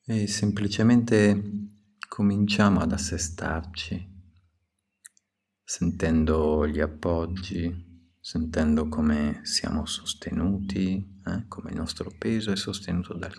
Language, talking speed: Italian, 90 wpm